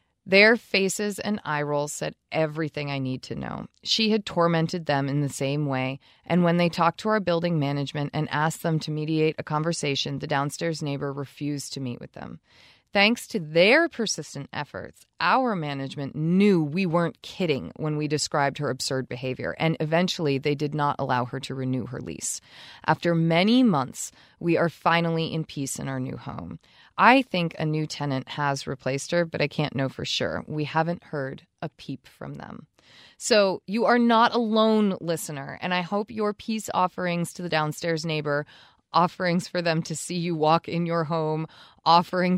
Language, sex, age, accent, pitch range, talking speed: English, female, 20-39, American, 145-180 Hz, 185 wpm